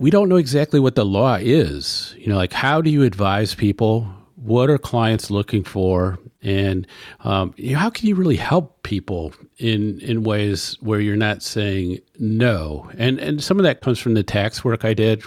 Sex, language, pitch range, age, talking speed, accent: male, English, 100-125 Hz, 50-69, 200 wpm, American